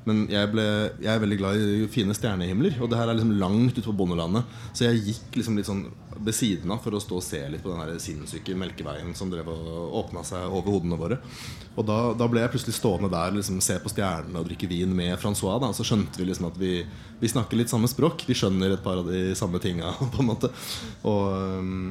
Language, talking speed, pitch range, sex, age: English, 240 wpm, 95-115 Hz, male, 20-39